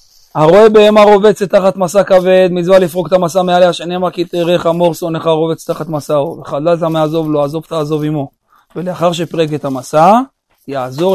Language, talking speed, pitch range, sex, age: Hebrew, 165 wpm, 145-185 Hz, male, 40-59